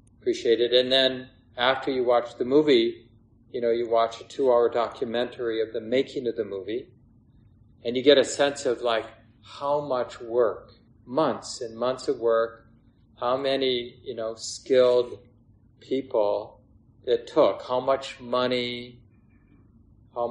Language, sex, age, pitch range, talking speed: English, male, 40-59, 115-135 Hz, 140 wpm